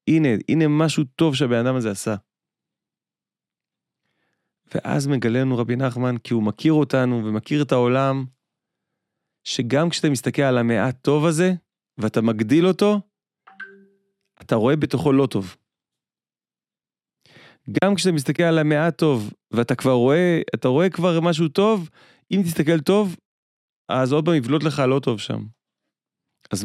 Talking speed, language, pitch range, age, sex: 135 wpm, Hebrew, 110-155 Hz, 30-49, male